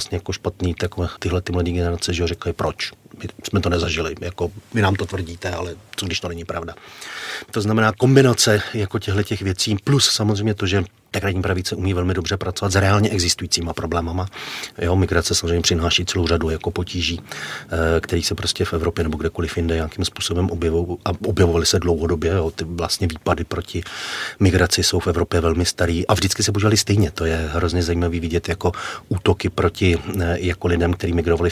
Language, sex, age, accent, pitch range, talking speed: Czech, male, 40-59, native, 85-100 Hz, 180 wpm